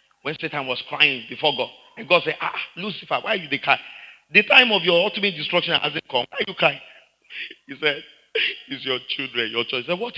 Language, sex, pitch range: English, male, 125-175 Hz